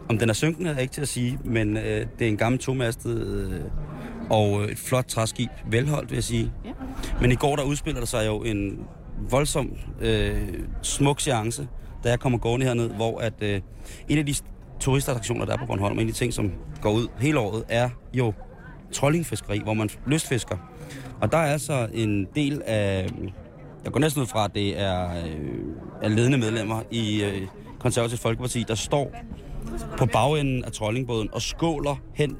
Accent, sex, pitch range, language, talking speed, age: native, male, 110-135 Hz, Danish, 195 wpm, 30-49